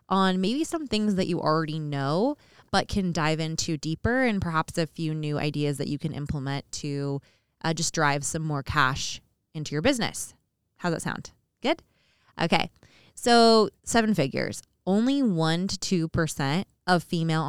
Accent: American